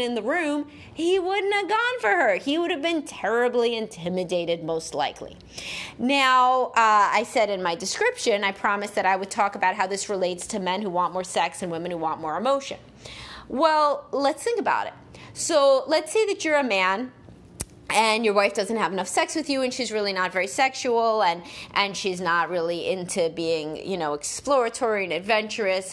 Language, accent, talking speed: English, American, 195 wpm